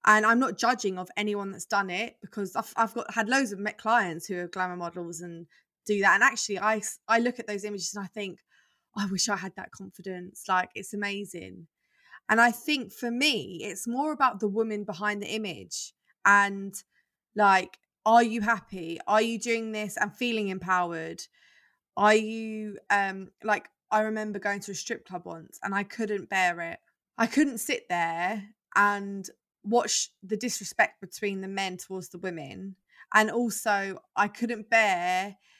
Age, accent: 20-39, British